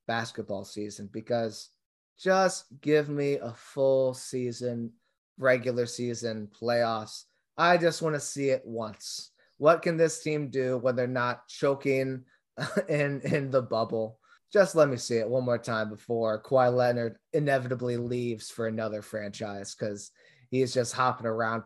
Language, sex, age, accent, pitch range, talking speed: English, male, 20-39, American, 115-140 Hz, 145 wpm